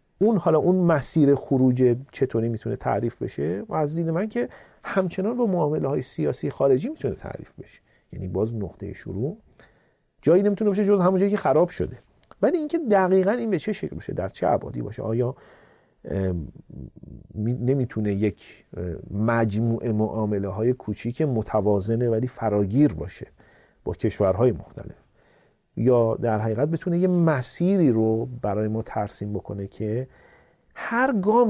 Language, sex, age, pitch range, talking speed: Persian, male, 40-59, 105-155 Hz, 150 wpm